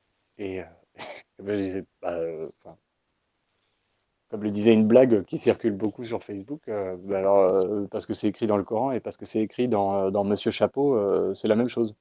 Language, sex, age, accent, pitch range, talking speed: French, male, 30-49, French, 95-120 Hz, 210 wpm